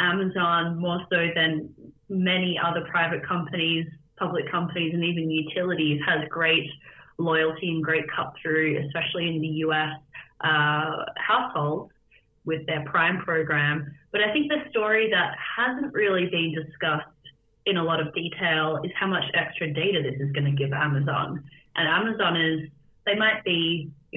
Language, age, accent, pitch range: English, 30-49, Australian, 155-175 Hz